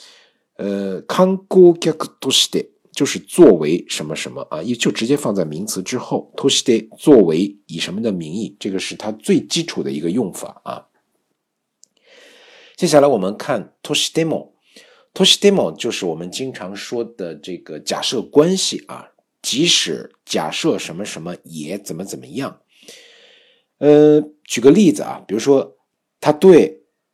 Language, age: Chinese, 50-69